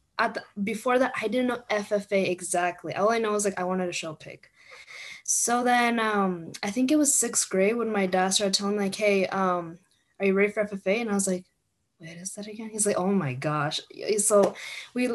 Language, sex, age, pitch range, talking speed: English, female, 10-29, 190-235 Hz, 225 wpm